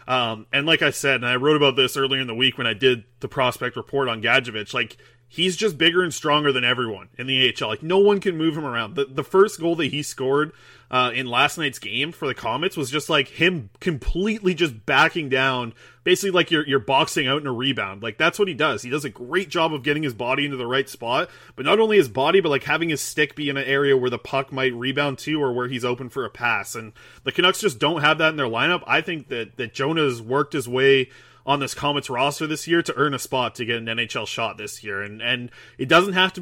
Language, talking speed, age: English, 260 wpm, 20-39